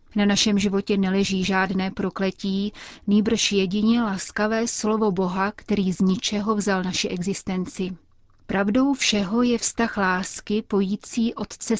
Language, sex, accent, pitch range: Czech, female, native, 185-215 Hz